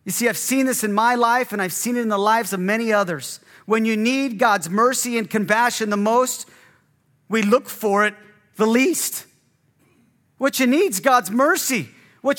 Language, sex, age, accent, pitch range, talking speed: English, male, 40-59, American, 205-255 Hz, 195 wpm